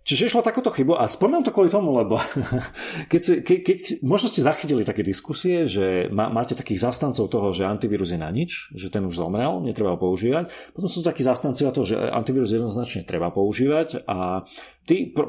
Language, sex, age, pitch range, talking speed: Slovak, male, 40-59, 95-135 Hz, 190 wpm